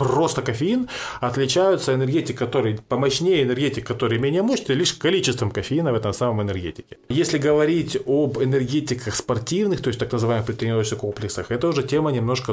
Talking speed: 155 wpm